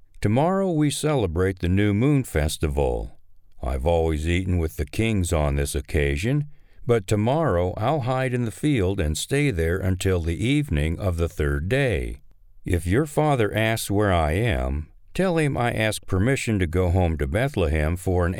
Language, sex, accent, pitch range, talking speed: English, male, American, 80-115 Hz, 170 wpm